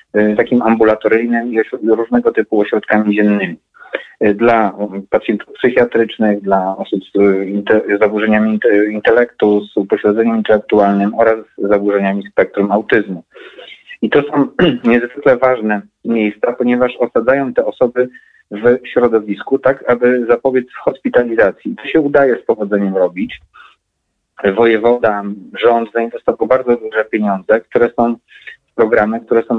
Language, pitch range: Polish, 105-120 Hz